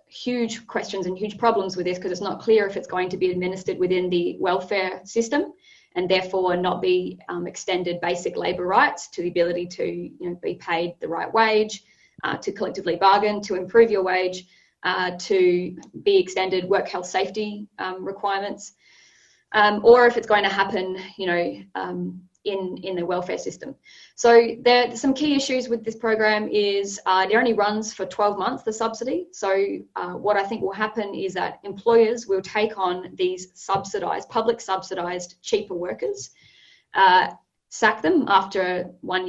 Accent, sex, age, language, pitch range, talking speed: Australian, female, 20-39, English, 180-215 Hz, 175 wpm